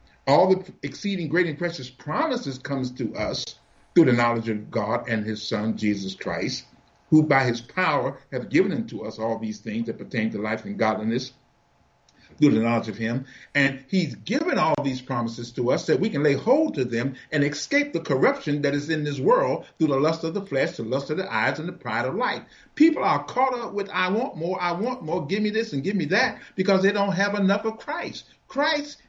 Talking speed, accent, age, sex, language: 225 wpm, American, 50-69, male, English